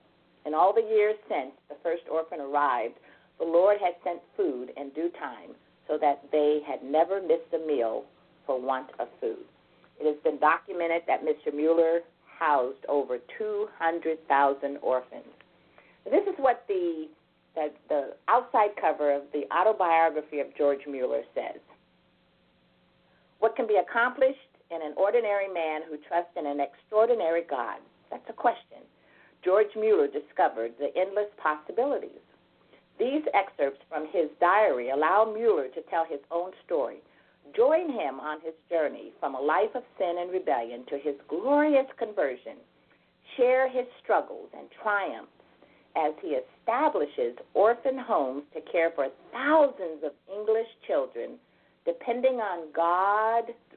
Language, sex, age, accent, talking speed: English, female, 50-69, American, 140 wpm